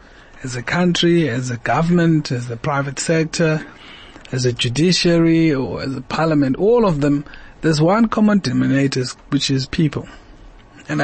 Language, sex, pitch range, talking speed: English, male, 140-170 Hz, 150 wpm